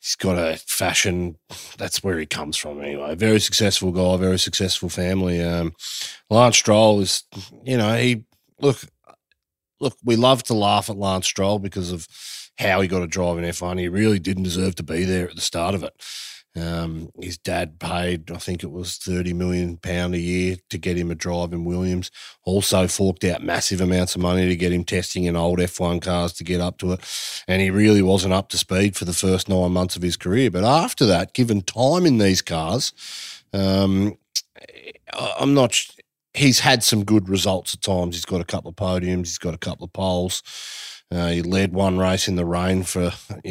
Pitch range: 90-105 Hz